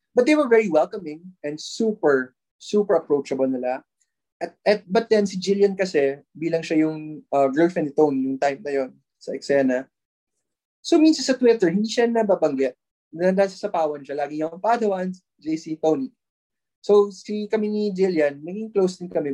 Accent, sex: native, male